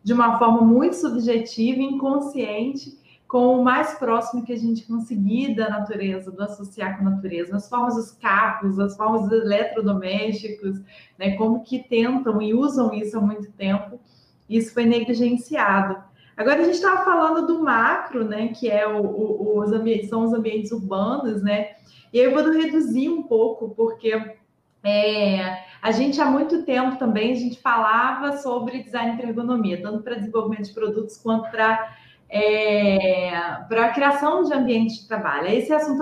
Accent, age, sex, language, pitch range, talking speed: Brazilian, 20-39, female, Portuguese, 210-255 Hz, 155 wpm